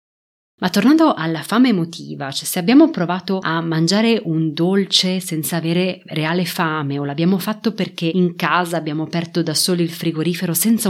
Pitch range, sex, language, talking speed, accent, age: 160-205 Hz, female, Italian, 165 wpm, native, 30-49